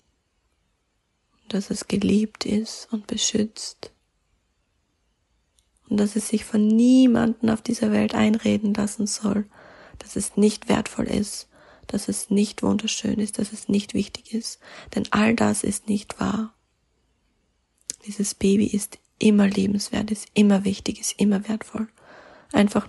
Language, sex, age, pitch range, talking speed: German, female, 20-39, 210-225 Hz, 135 wpm